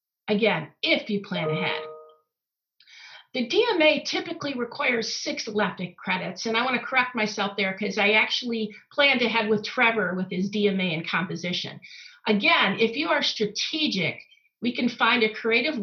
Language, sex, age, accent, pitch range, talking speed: English, female, 50-69, American, 185-240 Hz, 155 wpm